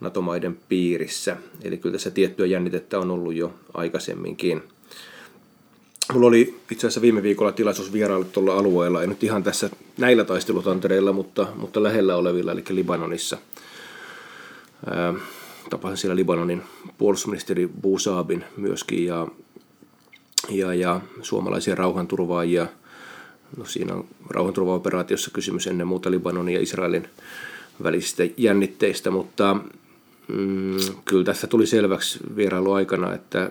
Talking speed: 115 wpm